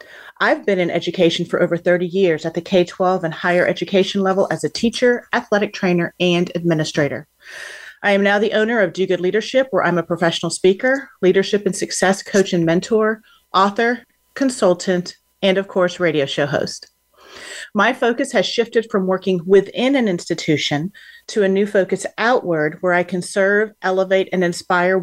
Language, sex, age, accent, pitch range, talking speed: English, female, 40-59, American, 175-205 Hz, 170 wpm